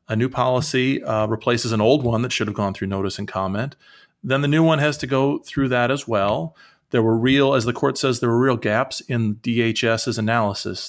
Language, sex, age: English, male, 40-59